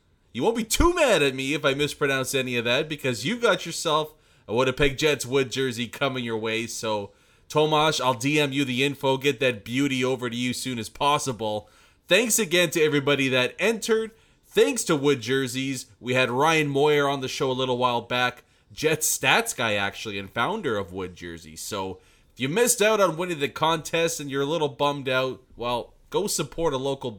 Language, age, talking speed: English, 30-49, 205 wpm